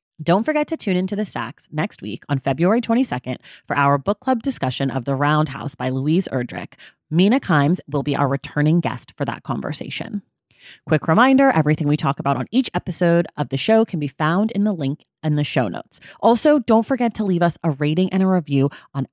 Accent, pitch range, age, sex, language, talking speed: American, 145-200 Hz, 30-49, female, English, 210 wpm